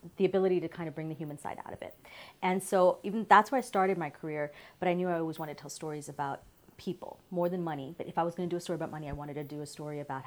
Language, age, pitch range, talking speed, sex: English, 30-49, 150-180 Hz, 310 wpm, female